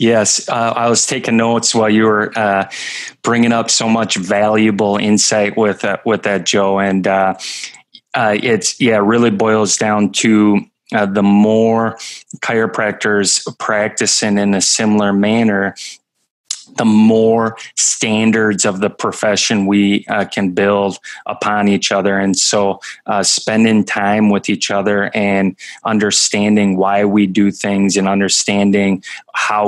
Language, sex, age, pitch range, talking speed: English, male, 20-39, 100-110 Hz, 140 wpm